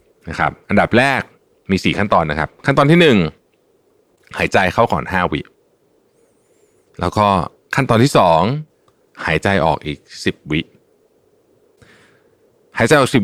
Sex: male